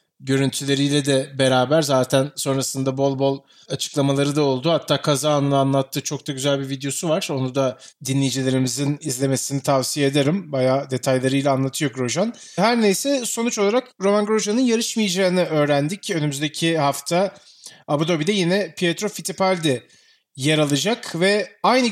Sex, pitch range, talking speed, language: male, 145-200 Hz, 135 wpm, Turkish